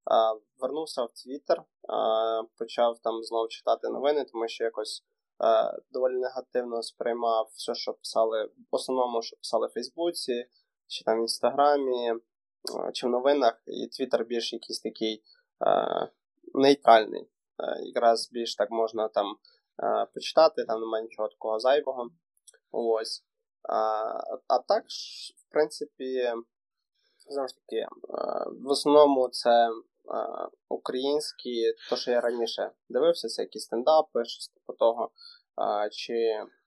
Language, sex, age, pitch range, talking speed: Ukrainian, male, 20-39, 115-145 Hz, 115 wpm